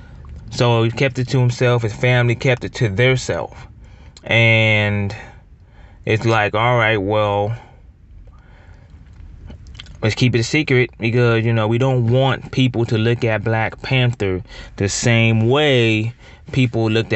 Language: English